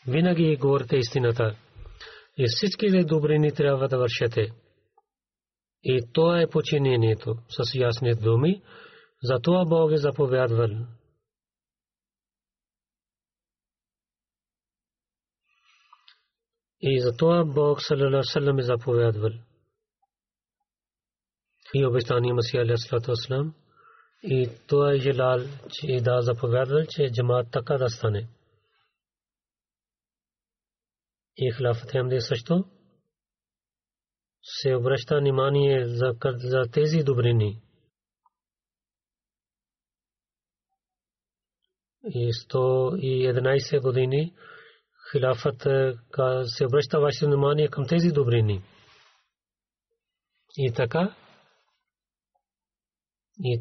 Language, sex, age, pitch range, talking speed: Bulgarian, male, 40-59, 120-150 Hz, 80 wpm